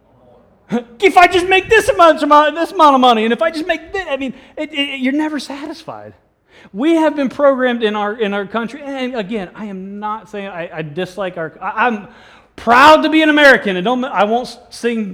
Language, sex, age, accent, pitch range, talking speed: English, male, 30-49, American, 180-265 Hz, 220 wpm